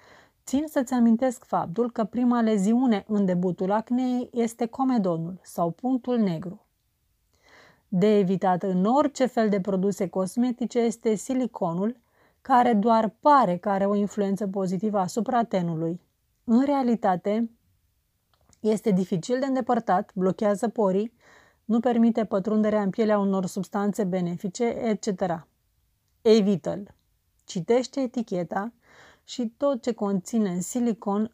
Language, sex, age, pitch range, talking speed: Romanian, female, 30-49, 190-235 Hz, 115 wpm